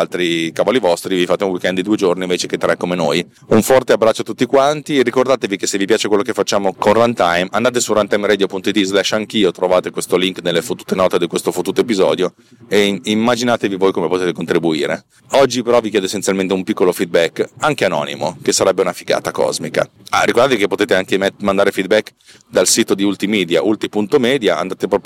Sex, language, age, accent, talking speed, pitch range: male, Italian, 30-49, native, 190 wpm, 95-125 Hz